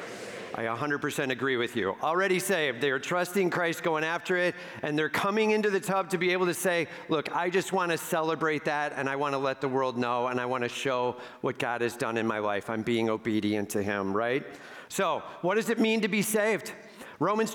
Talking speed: 230 wpm